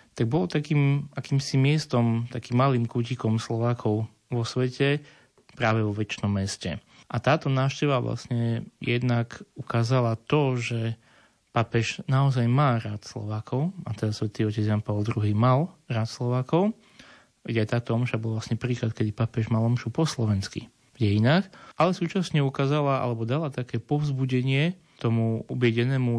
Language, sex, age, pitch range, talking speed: Slovak, male, 30-49, 115-140 Hz, 140 wpm